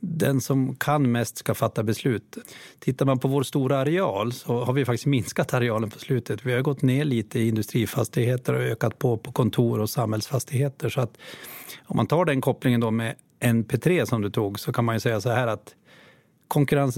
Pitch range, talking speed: 115-140 Hz, 200 wpm